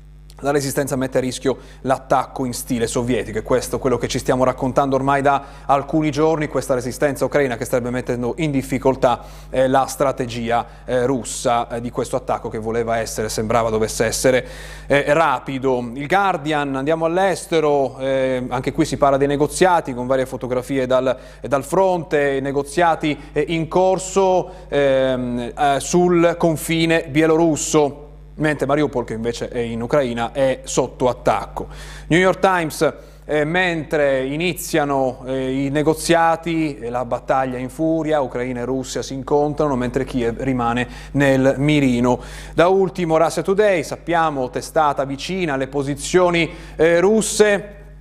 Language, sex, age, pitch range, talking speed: Italian, male, 30-49, 130-155 Hz, 135 wpm